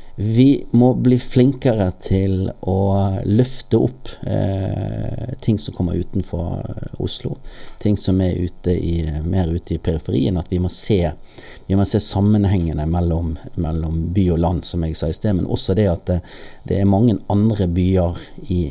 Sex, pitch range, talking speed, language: male, 85-110 Hz, 170 wpm, English